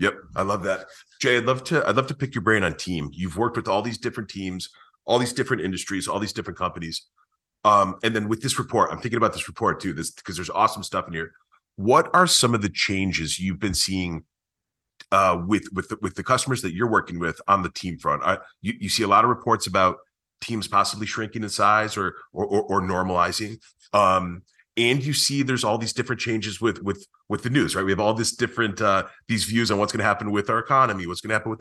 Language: English